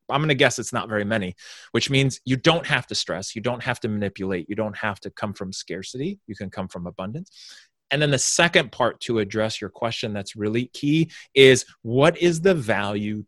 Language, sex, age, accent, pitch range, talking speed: English, male, 30-49, American, 110-140 Hz, 220 wpm